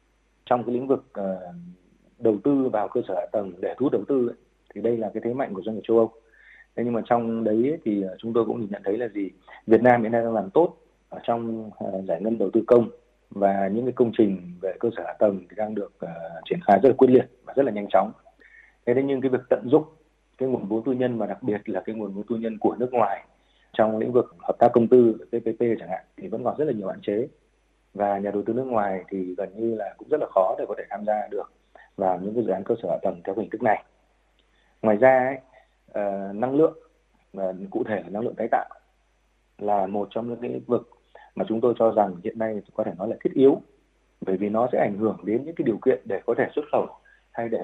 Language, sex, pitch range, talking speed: Vietnamese, male, 100-120 Hz, 260 wpm